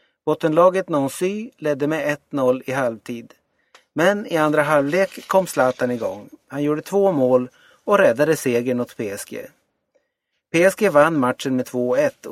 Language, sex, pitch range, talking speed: Swedish, male, 125-175 Hz, 135 wpm